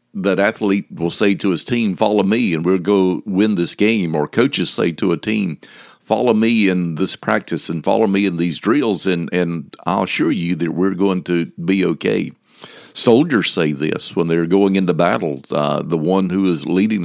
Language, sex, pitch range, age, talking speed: English, male, 85-100 Hz, 50-69, 200 wpm